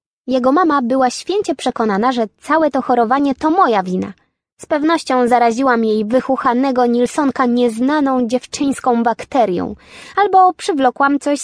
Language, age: Polish, 20-39